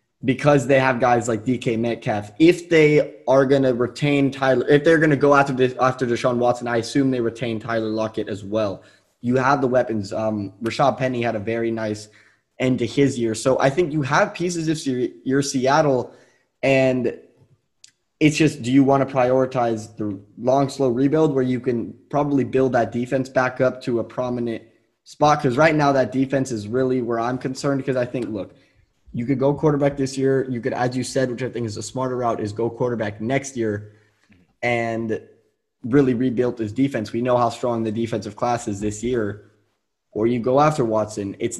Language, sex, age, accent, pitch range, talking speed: English, male, 10-29, American, 115-135 Hz, 200 wpm